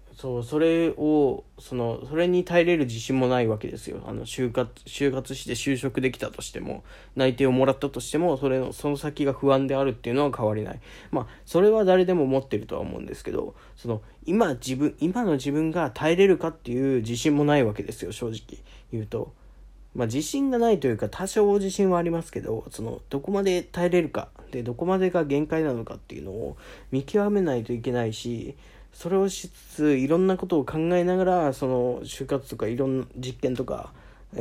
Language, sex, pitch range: Japanese, male, 120-150 Hz